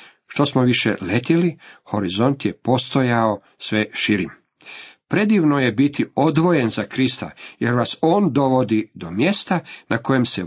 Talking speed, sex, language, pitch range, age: 140 wpm, male, Croatian, 110-145 Hz, 50-69